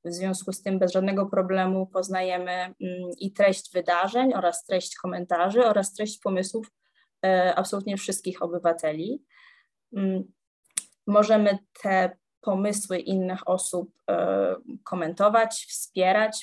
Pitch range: 180-220 Hz